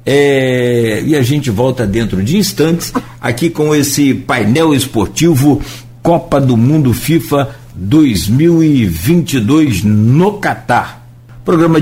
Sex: male